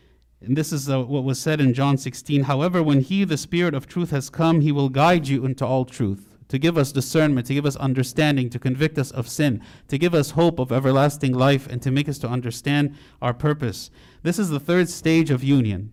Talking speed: 230 wpm